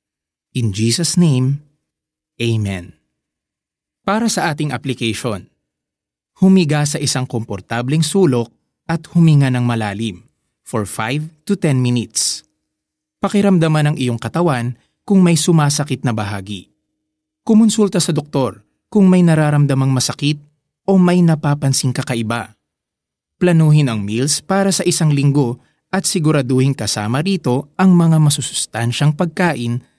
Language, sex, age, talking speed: Filipino, male, 20-39, 115 wpm